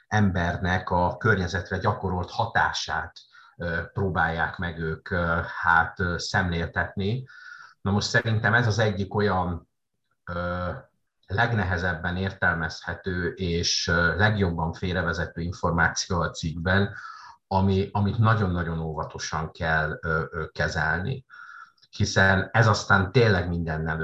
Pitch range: 85-100 Hz